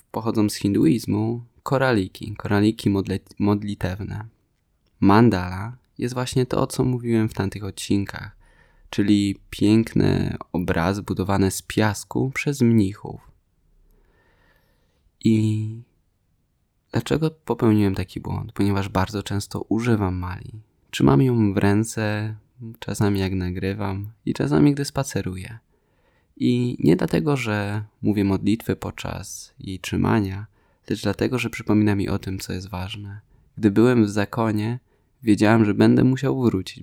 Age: 20-39